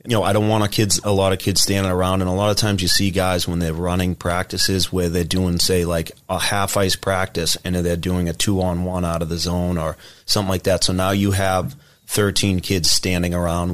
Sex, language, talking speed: male, English, 235 wpm